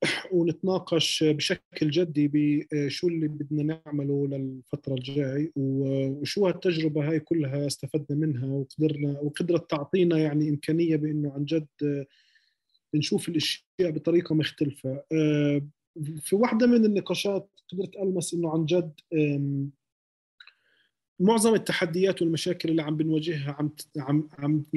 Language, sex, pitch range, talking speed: Arabic, male, 150-185 Hz, 105 wpm